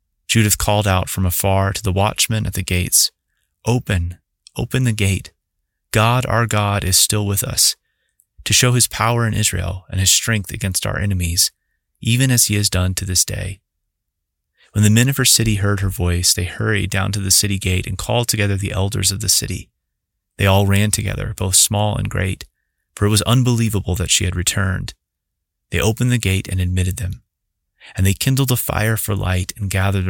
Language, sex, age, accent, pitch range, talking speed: English, male, 30-49, American, 95-110 Hz, 195 wpm